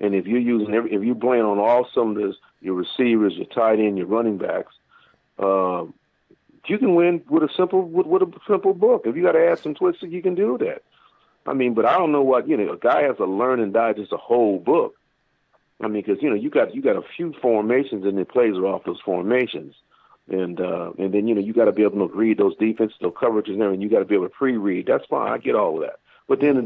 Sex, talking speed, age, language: male, 265 wpm, 50-69, English